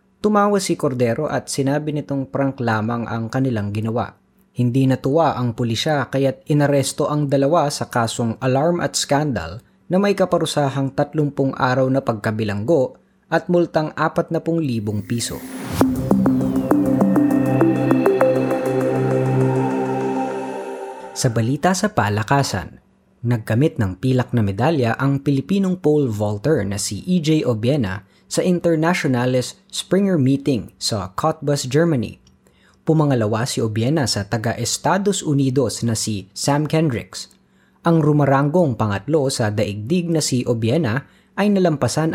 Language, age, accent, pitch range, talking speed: Filipino, 20-39, native, 110-155 Hz, 110 wpm